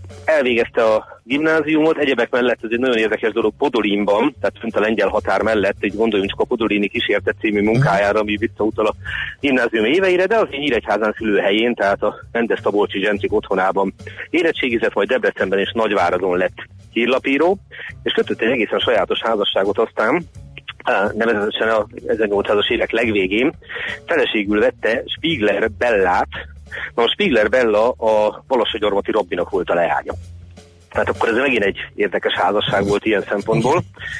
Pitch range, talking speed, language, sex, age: 100-120 Hz, 150 wpm, Hungarian, male, 30-49